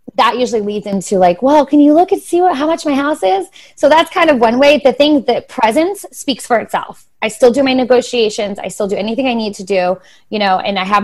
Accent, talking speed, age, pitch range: American, 260 wpm, 20-39, 190-250 Hz